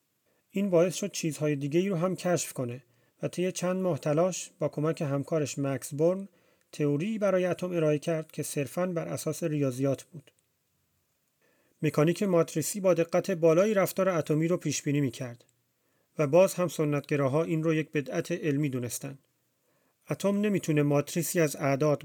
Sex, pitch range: male, 135-170 Hz